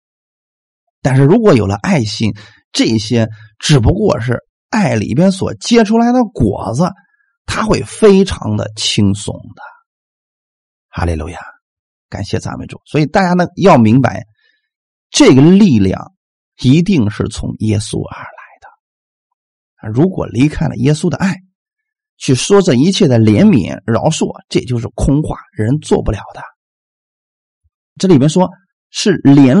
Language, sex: Chinese, male